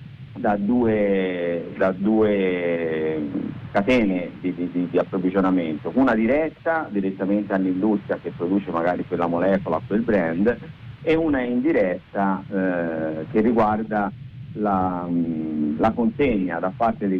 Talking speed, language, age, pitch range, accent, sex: 105 wpm, Italian, 50-69, 95-120 Hz, native, male